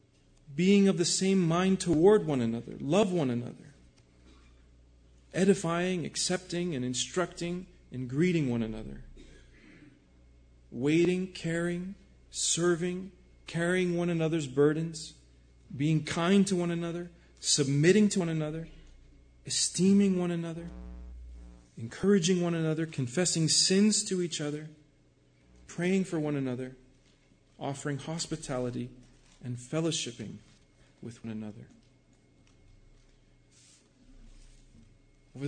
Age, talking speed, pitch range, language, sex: 40-59, 100 wpm, 125-175 Hz, English, male